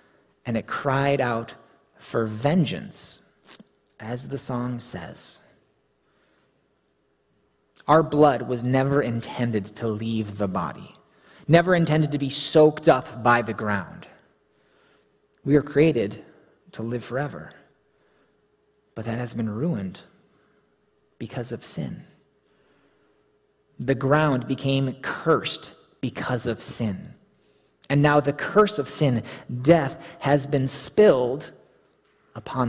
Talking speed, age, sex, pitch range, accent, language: 110 wpm, 30-49, male, 120-155 Hz, American, English